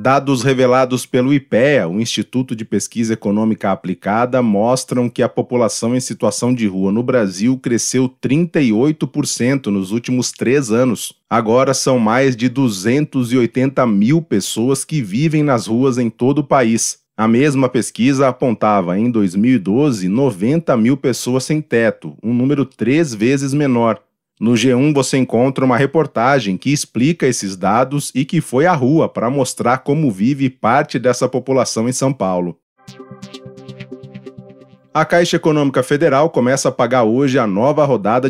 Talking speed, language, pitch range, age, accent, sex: 145 wpm, English, 120-140 Hz, 30-49, Brazilian, male